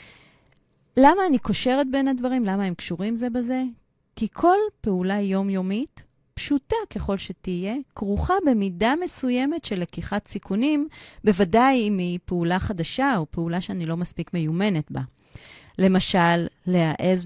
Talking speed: 130 wpm